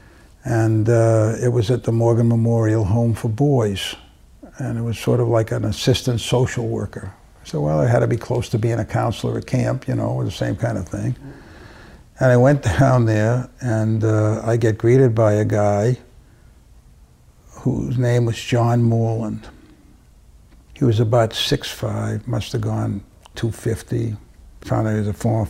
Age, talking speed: 60-79, 175 wpm